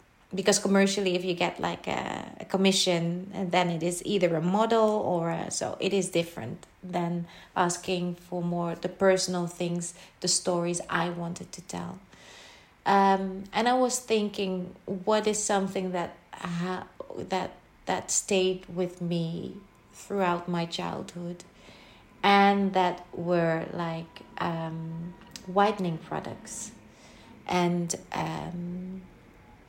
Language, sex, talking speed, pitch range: English, female, 125 wpm, 175-195 Hz